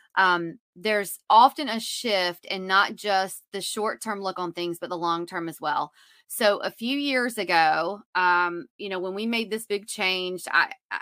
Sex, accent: female, American